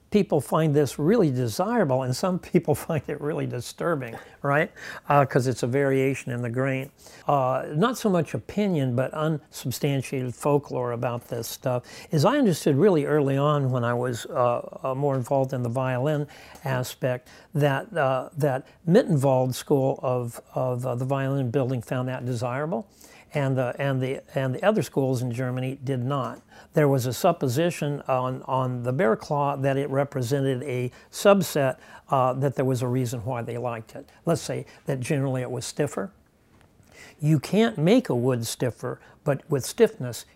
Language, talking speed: English, 170 wpm